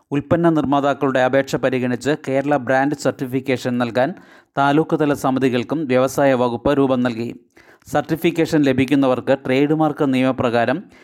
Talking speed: 105 wpm